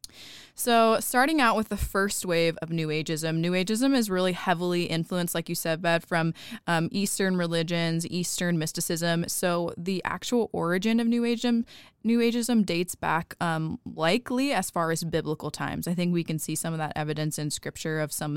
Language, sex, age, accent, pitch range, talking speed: English, female, 20-39, American, 160-190 Hz, 185 wpm